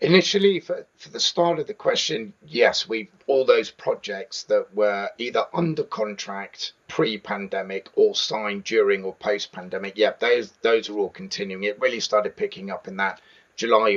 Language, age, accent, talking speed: English, 40-59, British, 165 wpm